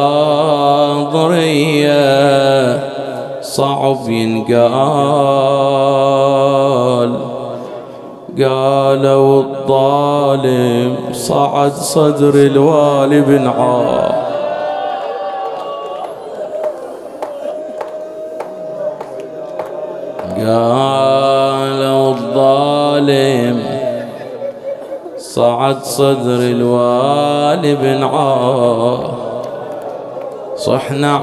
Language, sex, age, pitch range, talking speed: English, male, 30-49, 135-150 Hz, 30 wpm